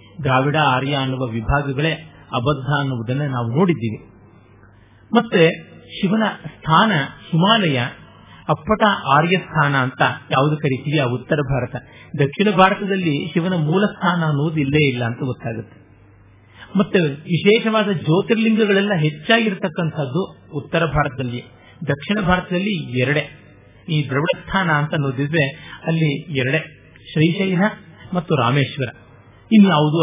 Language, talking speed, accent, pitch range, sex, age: Kannada, 100 wpm, native, 130-175 Hz, male, 50-69